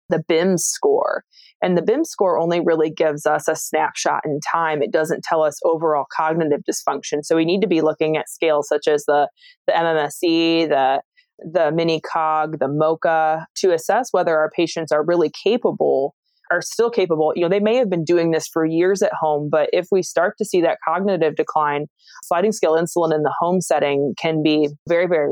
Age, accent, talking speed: 20-39, American, 195 wpm